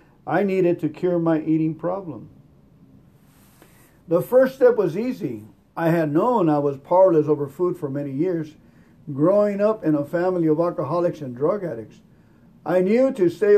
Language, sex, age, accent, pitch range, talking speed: English, male, 50-69, American, 150-185 Hz, 165 wpm